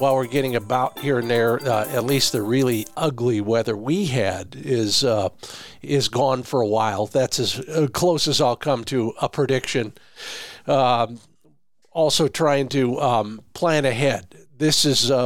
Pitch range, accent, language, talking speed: 120-155 Hz, American, English, 165 wpm